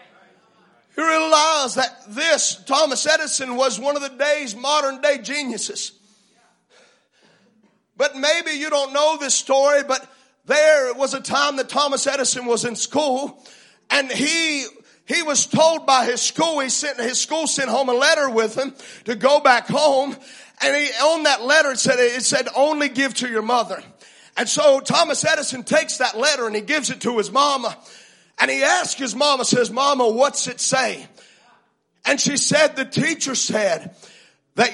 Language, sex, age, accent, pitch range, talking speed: English, male, 40-59, American, 240-290 Hz, 170 wpm